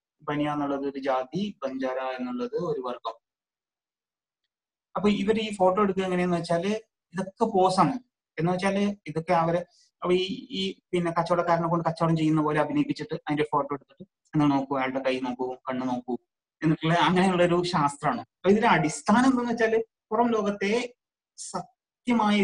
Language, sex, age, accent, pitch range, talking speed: Malayalam, male, 30-49, native, 150-205 Hz, 135 wpm